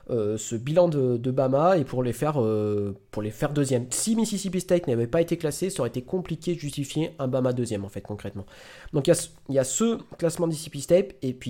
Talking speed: 245 wpm